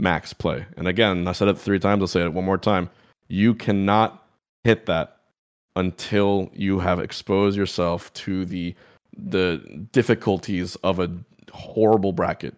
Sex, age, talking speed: male, 20-39, 155 wpm